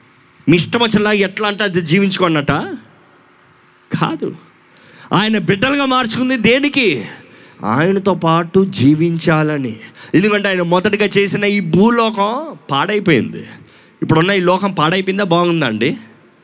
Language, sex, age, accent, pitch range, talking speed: Telugu, male, 30-49, native, 145-205 Hz, 100 wpm